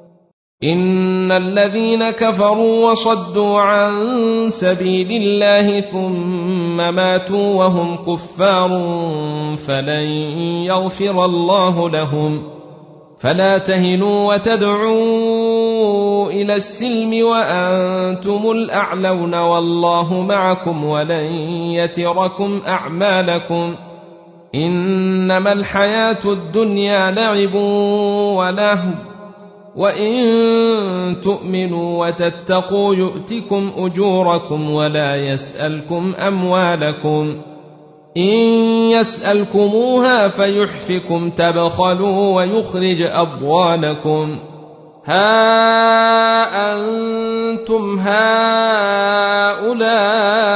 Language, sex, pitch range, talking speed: Arabic, male, 170-205 Hz, 60 wpm